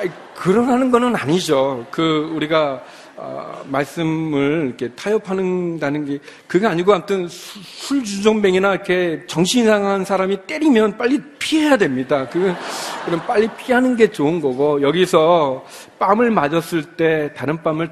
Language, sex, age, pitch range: Korean, male, 40-59, 130-180 Hz